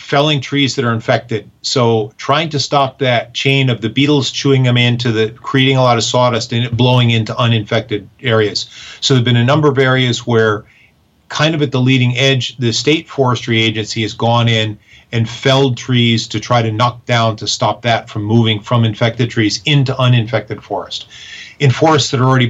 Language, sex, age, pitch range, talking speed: English, male, 40-59, 115-135 Hz, 195 wpm